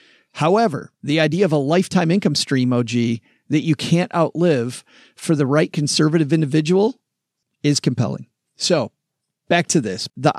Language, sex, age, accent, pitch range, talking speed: English, male, 40-59, American, 130-160 Hz, 145 wpm